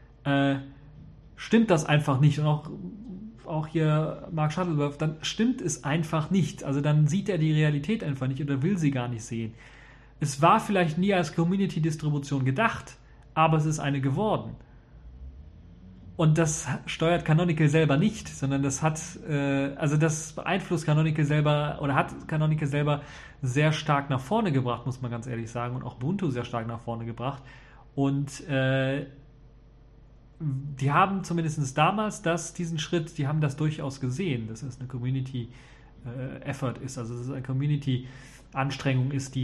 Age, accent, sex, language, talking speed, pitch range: 30-49, German, male, German, 160 wpm, 135-165 Hz